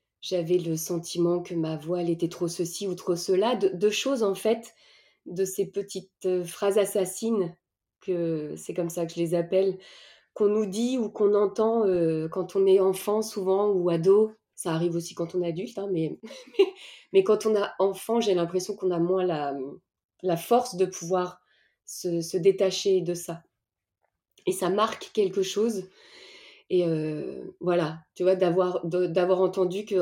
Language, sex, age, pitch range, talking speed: French, female, 20-39, 175-205 Hz, 180 wpm